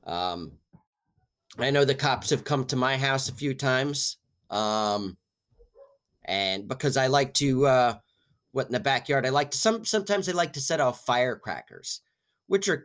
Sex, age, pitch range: male, 30-49, 110-155 Hz